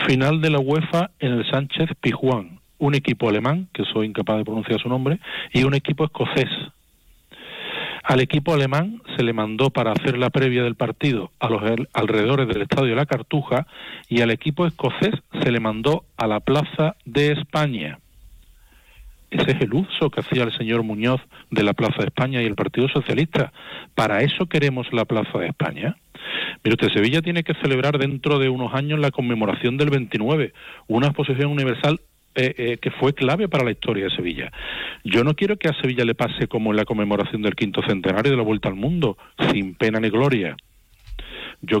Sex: male